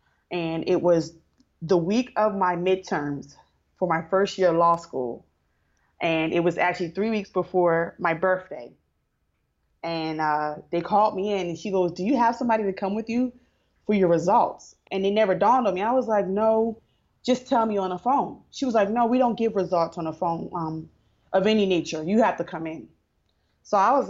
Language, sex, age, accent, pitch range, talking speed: English, female, 20-39, American, 165-210 Hz, 205 wpm